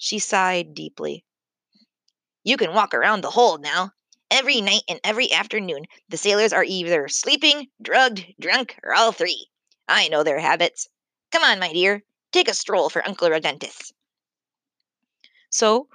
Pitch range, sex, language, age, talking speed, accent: 185-290 Hz, female, English, 20-39, 150 wpm, American